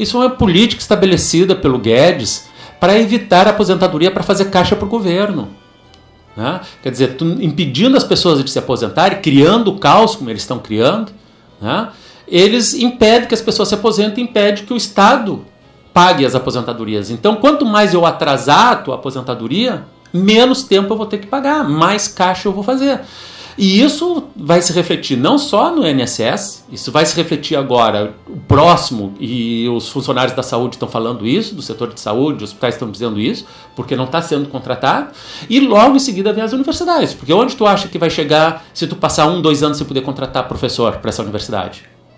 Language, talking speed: Portuguese, 190 wpm